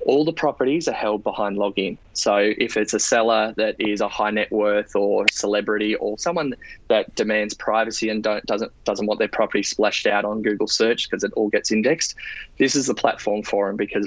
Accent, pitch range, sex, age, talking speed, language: Australian, 105-115 Hz, male, 20-39, 210 wpm, English